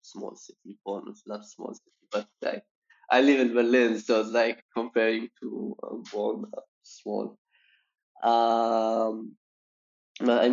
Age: 20-39